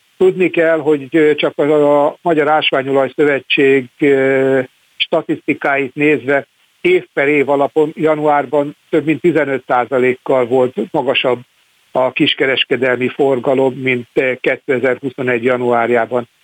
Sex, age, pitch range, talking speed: male, 60-79, 130-150 Hz, 95 wpm